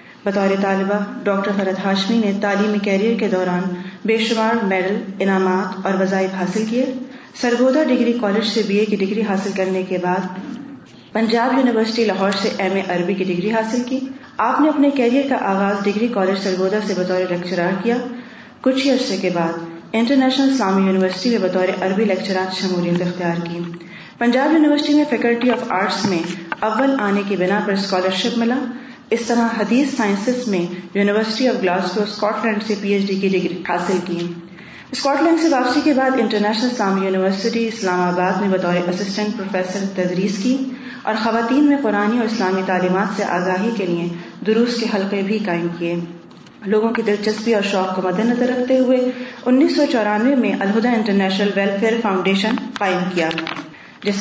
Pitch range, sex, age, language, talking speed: 190-235 Hz, female, 30-49, Urdu, 175 wpm